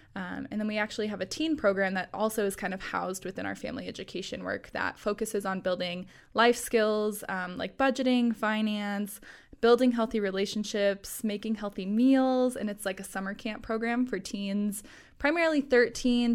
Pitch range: 195-230 Hz